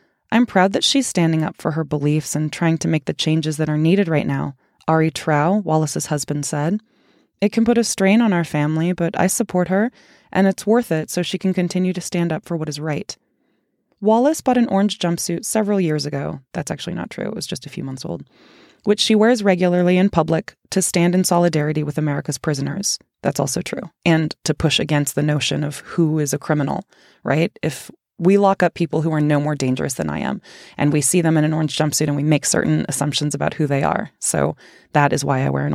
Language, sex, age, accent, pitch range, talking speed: English, female, 20-39, American, 150-195 Hz, 225 wpm